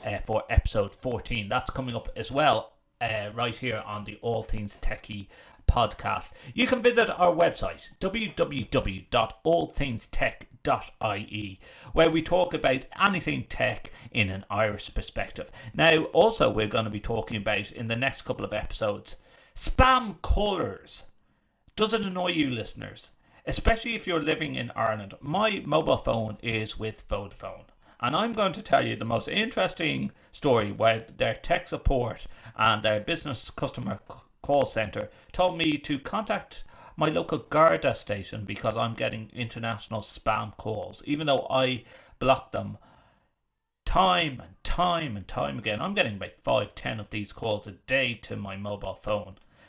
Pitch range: 105-155 Hz